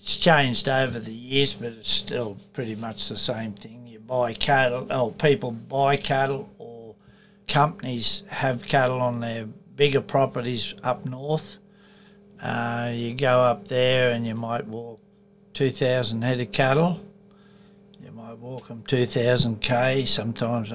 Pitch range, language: 115-160 Hz, English